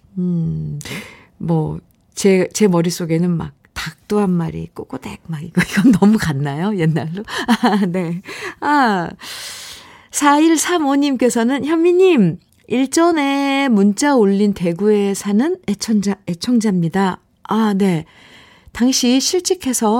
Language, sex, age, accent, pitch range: Korean, female, 50-69, native, 175-235 Hz